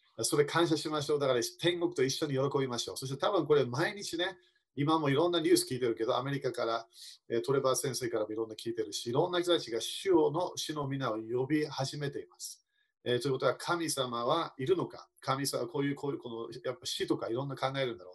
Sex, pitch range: male, 130-175 Hz